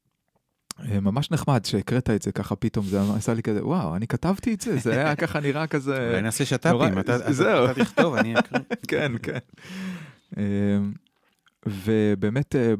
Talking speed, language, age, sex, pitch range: 140 wpm, Hebrew, 30-49, male, 105-135 Hz